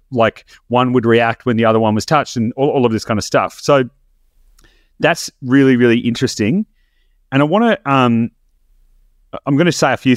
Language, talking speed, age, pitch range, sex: English, 200 wpm, 30-49, 105-140 Hz, male